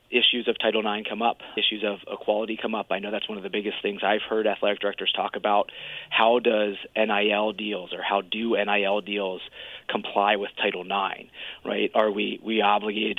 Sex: male